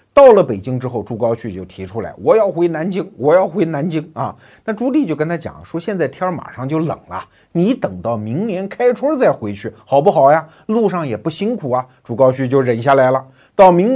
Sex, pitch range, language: male, 130-200 Hz, Chinese